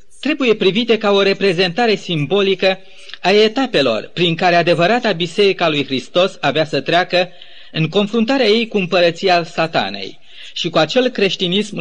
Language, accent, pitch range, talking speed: Romanian, native, 165-210 Hz, 135 wpm